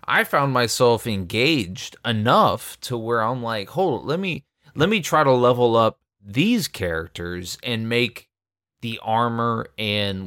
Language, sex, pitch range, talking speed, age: English, male, 95-130 Hz, 150 wpm, 30-49